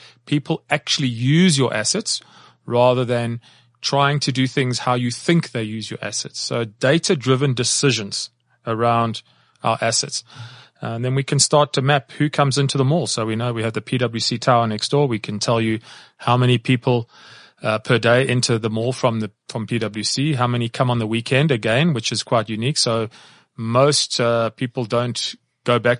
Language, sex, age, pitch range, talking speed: English, male, 30-49, 115-135 Hz, 185 wpm